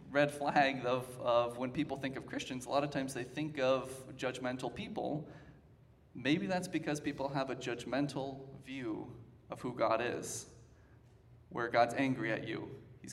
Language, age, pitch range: English, 20-39, 120-150 Hz